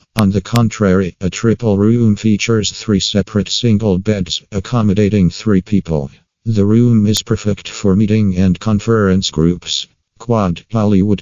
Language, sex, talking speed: English, male, 135 wpm